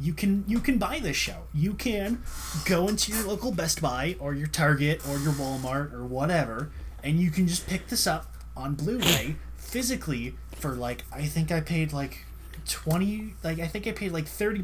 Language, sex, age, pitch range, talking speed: English, male, 20-39, 120-165 Hz, 195 wpm